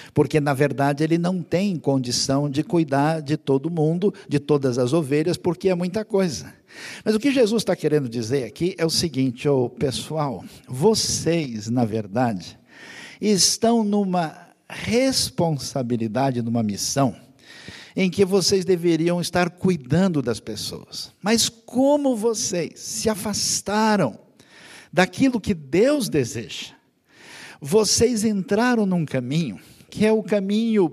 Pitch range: 135-195 Hz